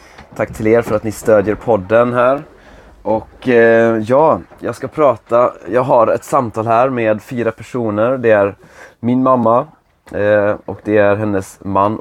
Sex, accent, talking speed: male, native, 165 wpm